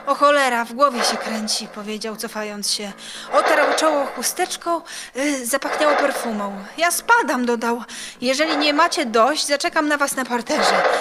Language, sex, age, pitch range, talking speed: Polish, female, 20-39, 220-315 Hz, 145 wpm